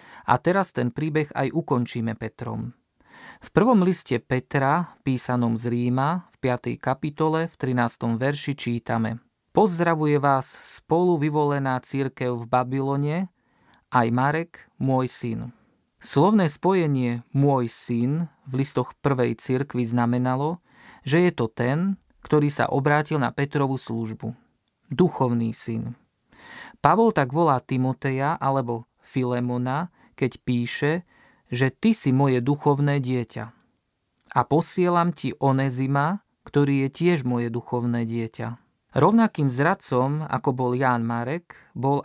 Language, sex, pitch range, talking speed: Slovak, male, 125-155 Hz, 120 wpm